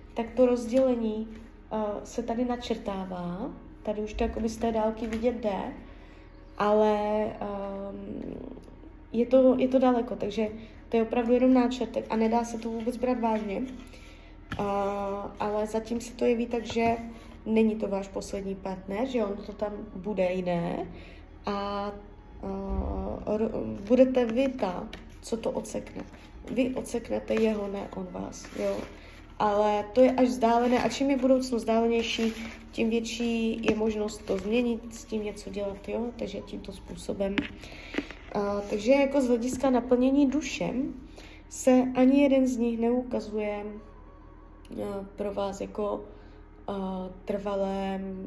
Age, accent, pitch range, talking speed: 20-39, native, 200-245 Hz, 140 wpm